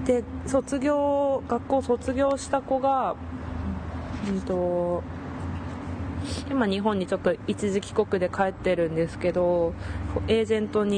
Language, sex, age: Japanese, female, 20-39